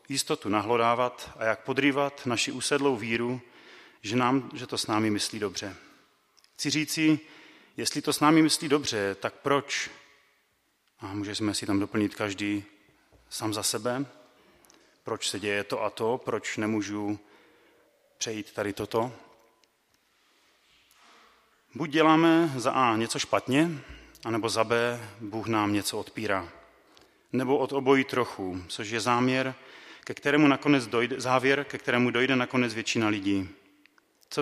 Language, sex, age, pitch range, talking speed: Czech, male, 30-49, 115-140 Hz, 140 wpm